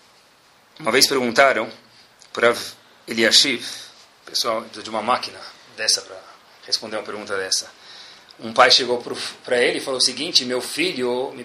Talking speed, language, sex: 140 wpm, Portuguese, male